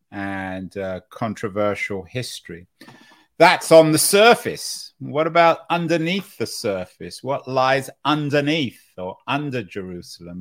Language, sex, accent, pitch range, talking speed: English, male, British, 115-155 Hz, 110 wpm